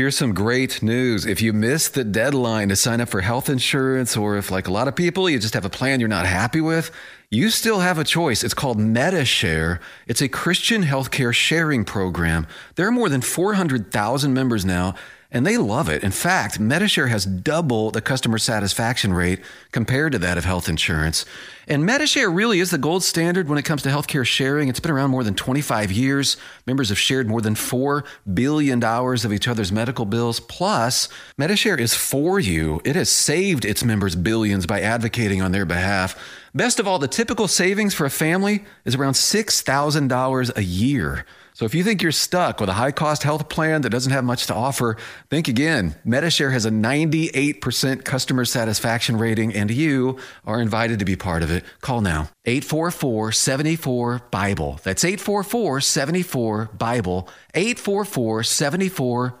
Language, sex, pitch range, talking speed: English, male, 110-150 Hz, 180 wpm